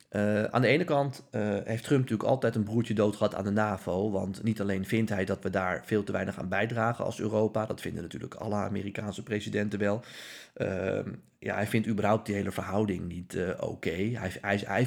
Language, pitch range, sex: Dutch, 95-115 Hz, male